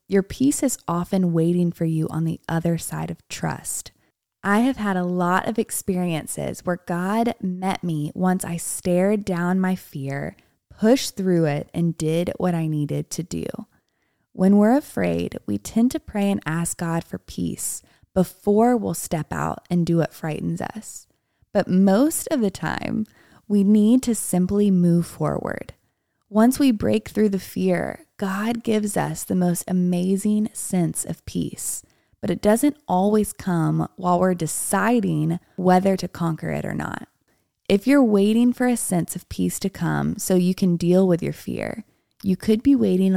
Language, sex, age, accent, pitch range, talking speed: English, female, 20-39, American, 170-210 Hz, 170 wpm